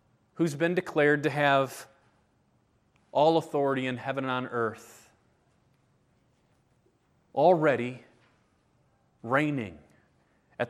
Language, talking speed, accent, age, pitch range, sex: English, 85 wpm, American, 30-49, 125-175 Hz, male